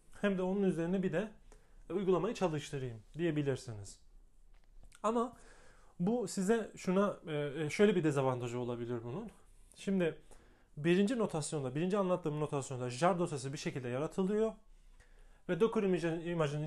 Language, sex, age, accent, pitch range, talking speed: Turkish, male, 30-49, native, 150-195 Hz, 115 wpm